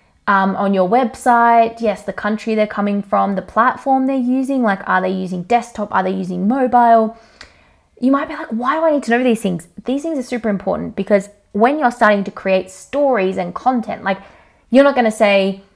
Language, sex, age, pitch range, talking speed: English, female, 20-39, 190-240 Hz, 210 wpm